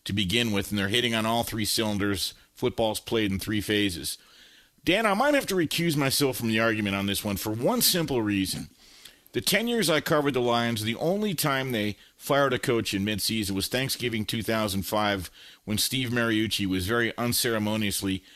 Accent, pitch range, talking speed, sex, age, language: American, 105-135 Hz, 185 wpm, male, 40-59, English